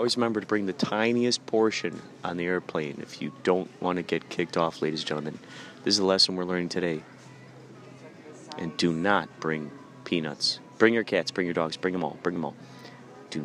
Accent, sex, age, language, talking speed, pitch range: American, male, 30-49, English, 205 wpm, 80-115 Hz